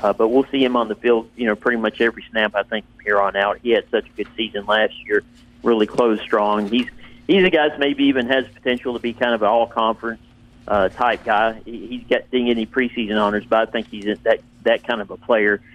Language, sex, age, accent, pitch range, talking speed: English, male, 40-59, American, 110-130 Hz, 250 wpm